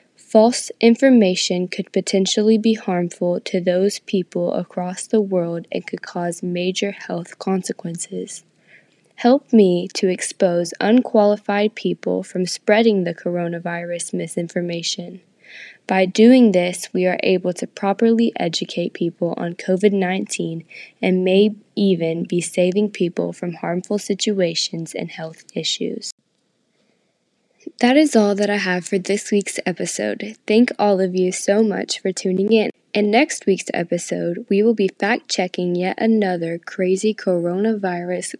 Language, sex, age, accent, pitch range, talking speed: English, female, 10-29, American, 175-210 Hz, 130 wpm